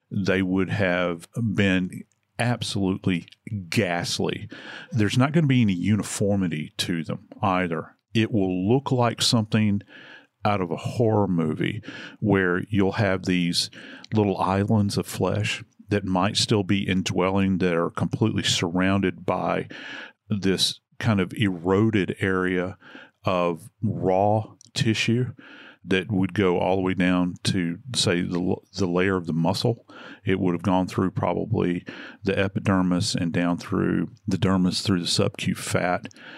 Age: 40-59